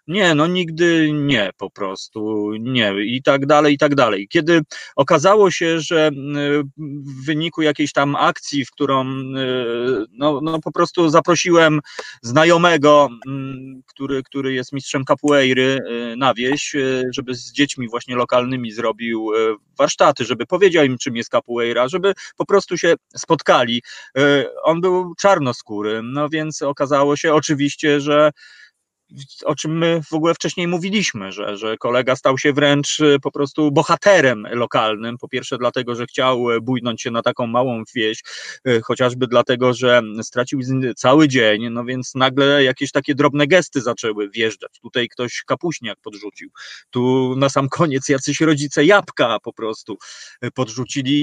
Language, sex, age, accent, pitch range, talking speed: Polish, male, 30-49, native, 125-155 Hz, 140 wpm